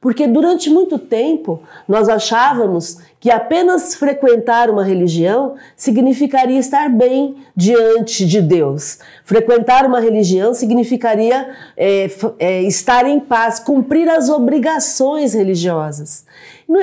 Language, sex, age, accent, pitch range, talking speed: Portuguese, female, 40-59, Brazilian, 180-250 Hz, 105 wpm